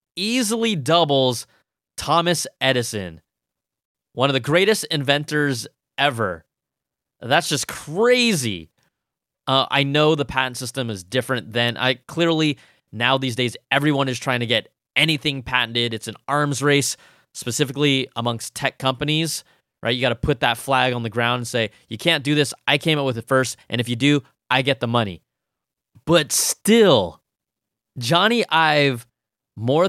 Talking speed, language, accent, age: 155 wpm, English, American, 20-39